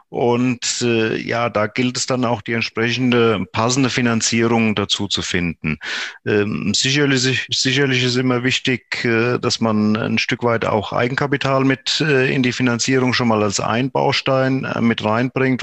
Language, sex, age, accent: German, male, 40-59, German